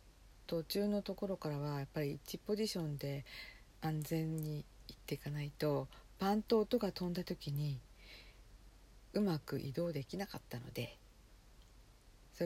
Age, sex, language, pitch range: 50-69, female, Japanese, 120-175 Hz